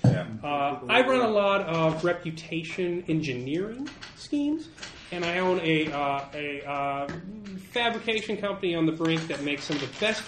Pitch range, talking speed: 120-155 Hz, 165 wpm